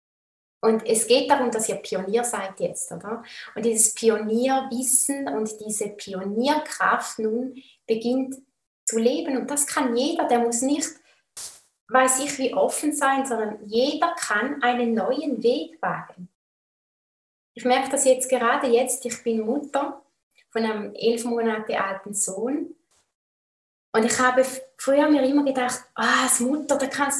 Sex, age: female, 20-39